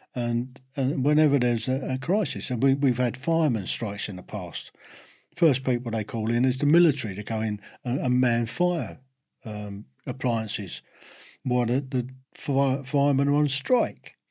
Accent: British